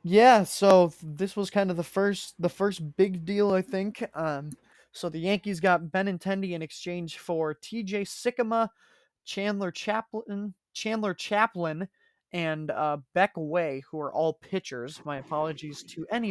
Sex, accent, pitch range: male, American, 150-185 Hz